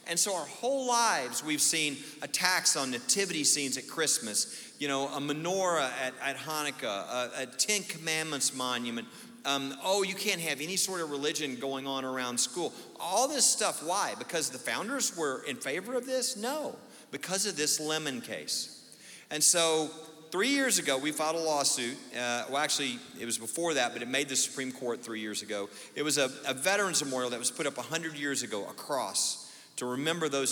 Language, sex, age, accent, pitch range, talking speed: English, male, 40-59, American, 125-165 Hz, 195 wpm